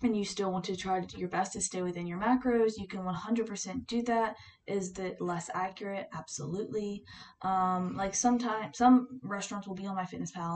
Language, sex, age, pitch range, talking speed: English, female, 10-29, 170-205 Hz, 195 wpm